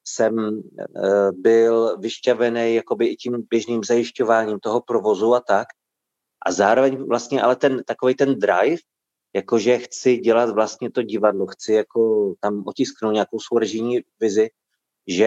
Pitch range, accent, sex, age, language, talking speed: 110-130 Hz, native, male, 30-49, Czech, 140 wpm